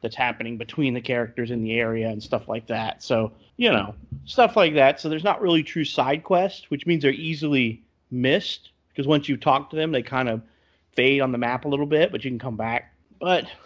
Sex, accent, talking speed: male, American, 230 wpm